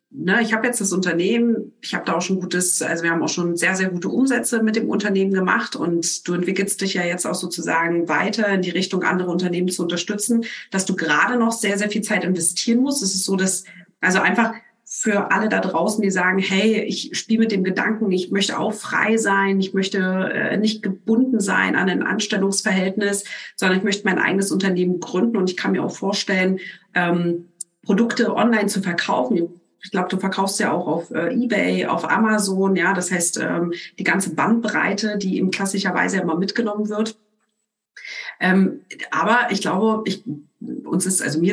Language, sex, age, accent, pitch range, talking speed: German, female, 40-59, German, 175-210 Hz, 190 wpm